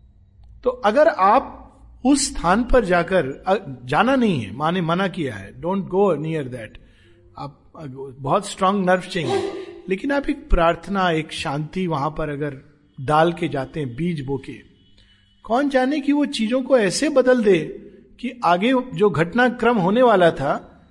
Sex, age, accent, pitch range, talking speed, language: male, 50-69, native, 155-230 Hz, 155 wpm, Hindi